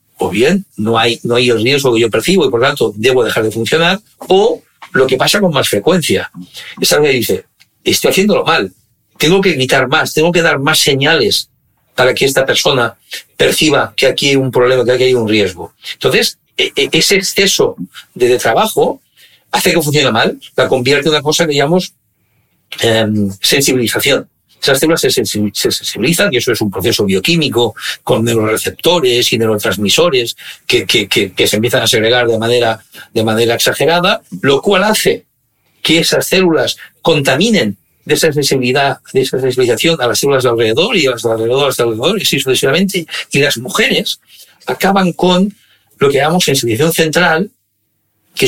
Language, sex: Spanish, male